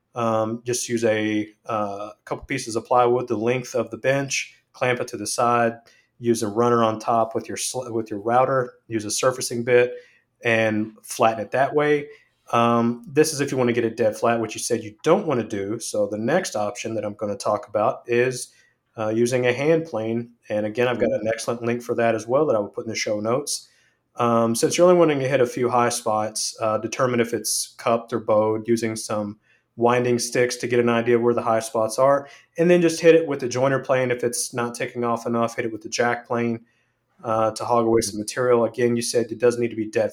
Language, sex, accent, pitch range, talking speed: English, male, American, 110-125 Hz, 240 wpm